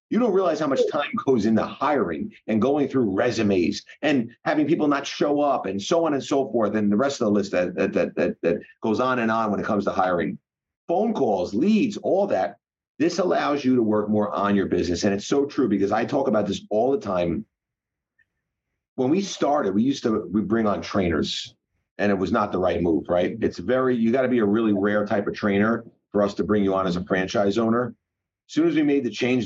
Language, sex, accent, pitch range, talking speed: English, male, American, 100-120 Hz, 240 wpm